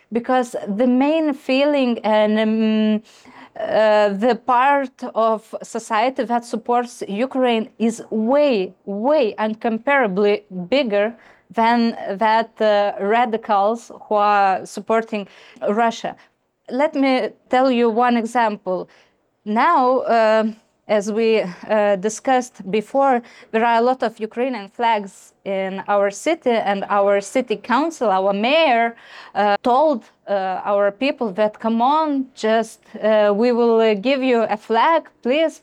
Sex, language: female, Ukrainian